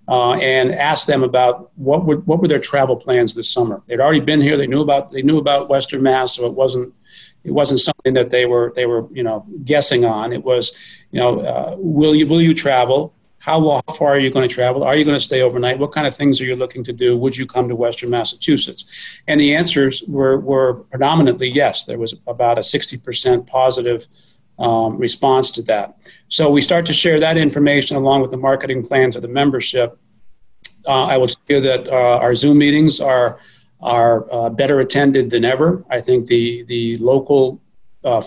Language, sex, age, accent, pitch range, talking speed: English, male, 40-59, American, 125-145 Hz, 210 wpm